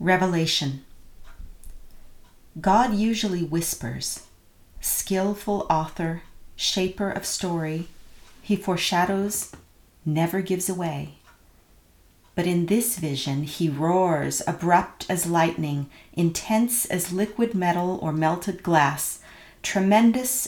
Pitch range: 155-195 Hz